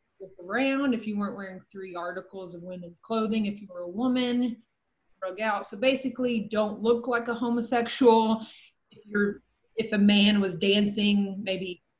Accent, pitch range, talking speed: American, 195-230 Hz, 160 wpm